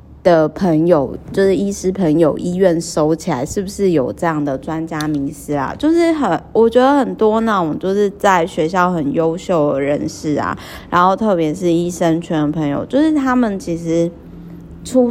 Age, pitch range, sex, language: 20-39, 160-205 Hz, female, Chinese